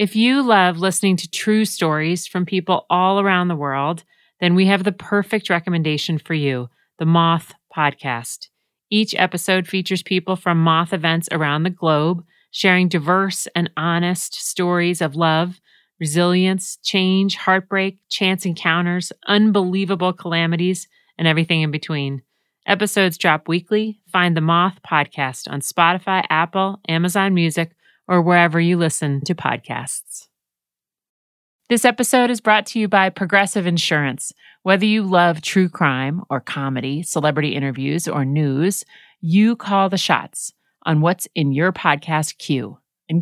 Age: 40-59